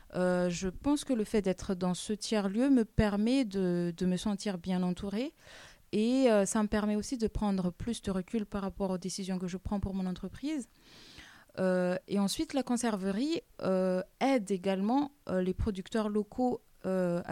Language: French